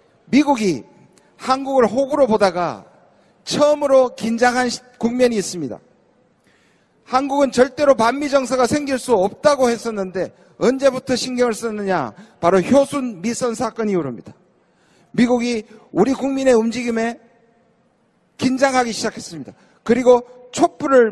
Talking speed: 90 wpm